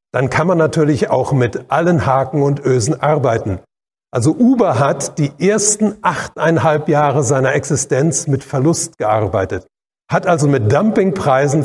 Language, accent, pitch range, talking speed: German, German, 130-170 Hz, 140 wpm